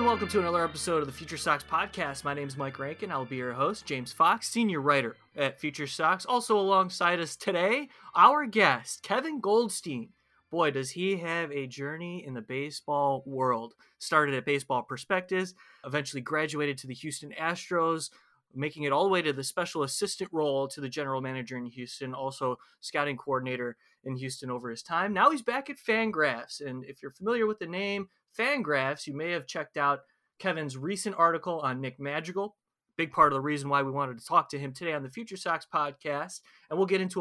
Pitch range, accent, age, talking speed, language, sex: 135-185 Hz, American, 20-39, 200 wpm, English, male